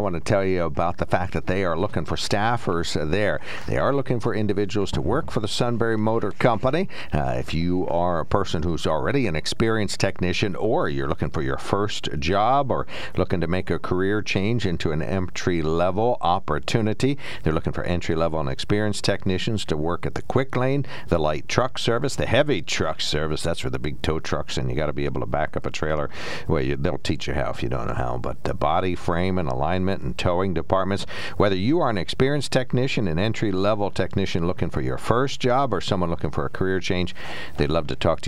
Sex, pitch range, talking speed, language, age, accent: male, 80-110 Hz, 225 wpm, English, 60-79, American